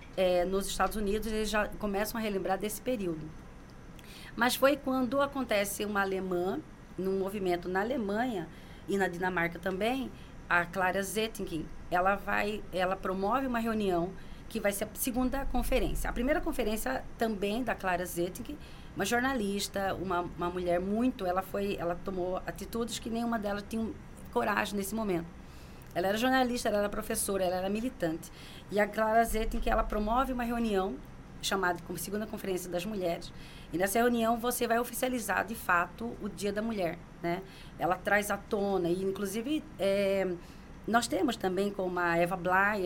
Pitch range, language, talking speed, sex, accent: 175-225 Hz, Portuguese, 160 wpm, female, Brazilian